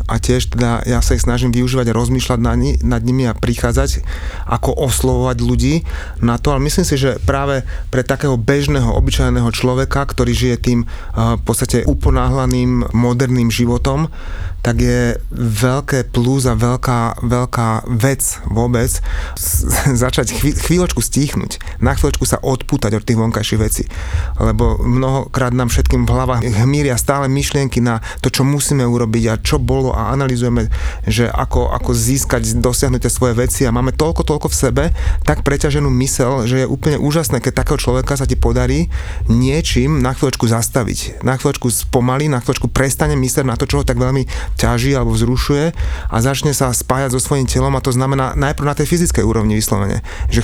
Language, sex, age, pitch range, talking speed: Slovak, male, 30-49, 115-135 Hz, 170 wpm